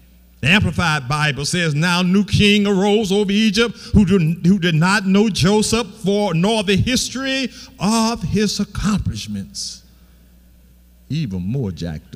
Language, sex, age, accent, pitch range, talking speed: English, male, 50-69, American, 140-220 Hz, 130 wpm